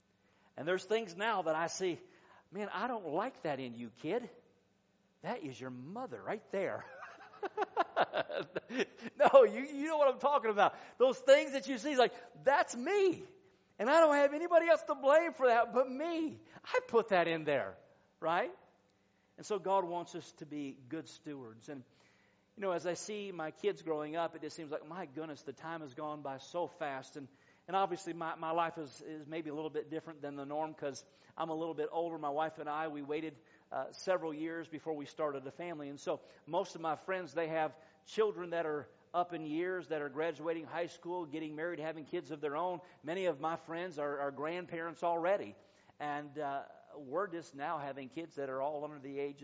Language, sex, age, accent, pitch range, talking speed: English, male, 50-69, American, 145-185 Hz, 205 wpm